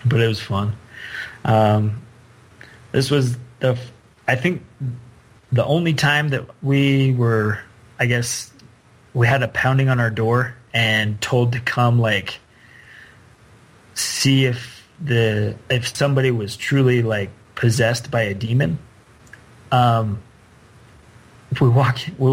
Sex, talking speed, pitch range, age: male, 125 wpm, 110-130 Hz, 30-49